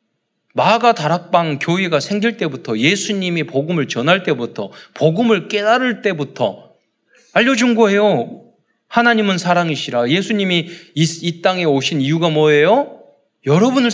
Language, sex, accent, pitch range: Korean, male, native, 145-225 Hz